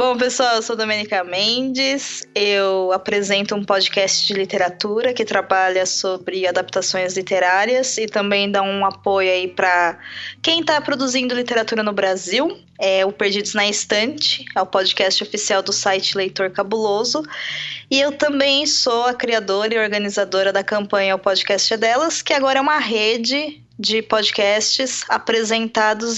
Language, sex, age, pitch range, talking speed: Portuguese, female, 20-39, 195-255 Hz, 150 wpm